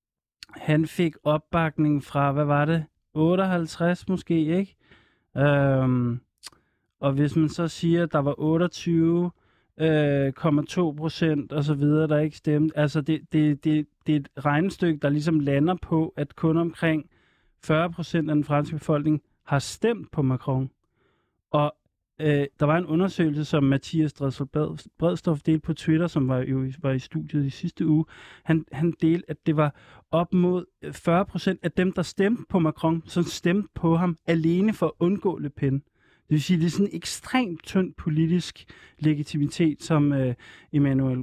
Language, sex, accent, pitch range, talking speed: Danish, male, native, 145-165 Hz, 160 wpm